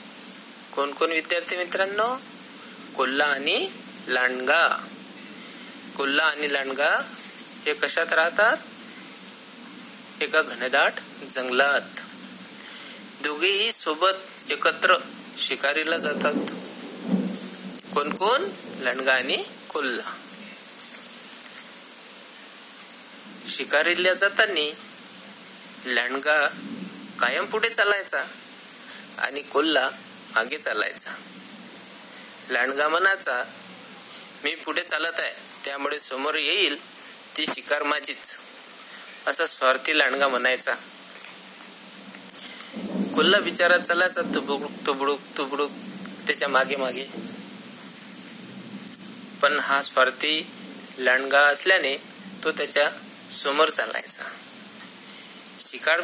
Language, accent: Marathi, native